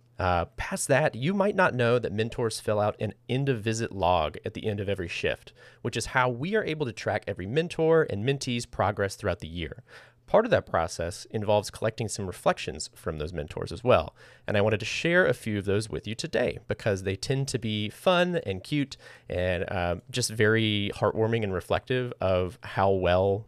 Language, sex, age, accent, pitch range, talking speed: English, male, 30-49, American, 95-125 Hz, 200 wpm